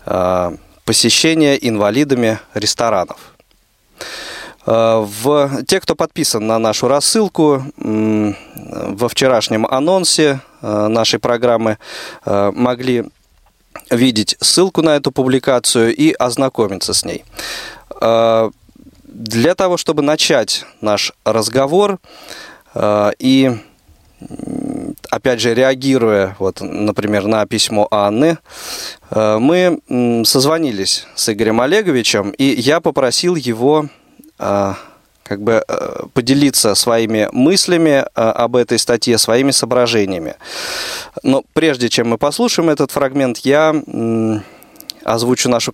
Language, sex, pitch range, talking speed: Russian, male, 110-145 Hz, 85 wpm